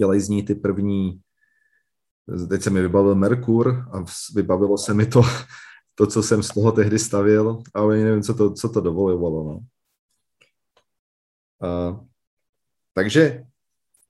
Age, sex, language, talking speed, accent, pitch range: 40-59, male, Czech, 125 wpm, native, 95-125 Hz